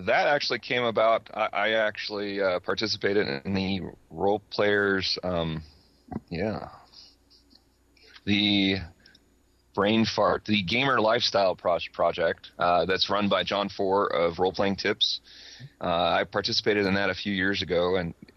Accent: American